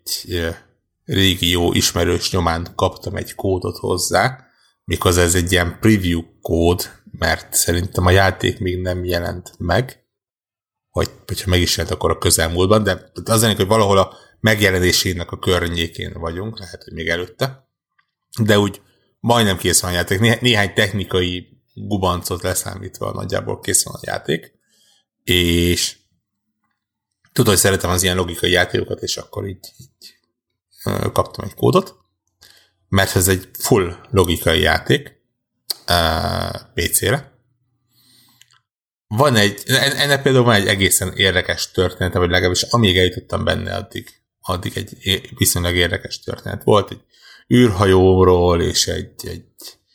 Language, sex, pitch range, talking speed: Hungarian, male, 90-110 Hz, 135 wpm